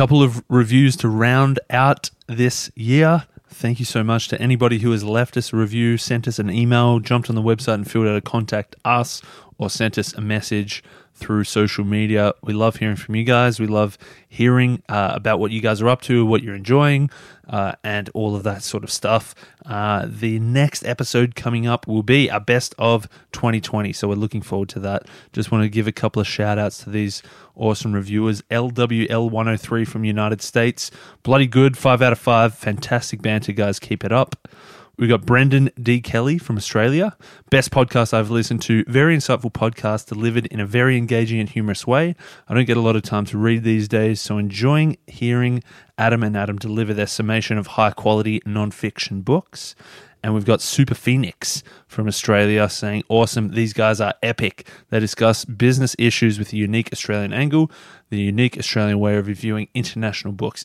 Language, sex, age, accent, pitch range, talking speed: English, male, 20-39, Australian, 105-125 Hz, 190 wpm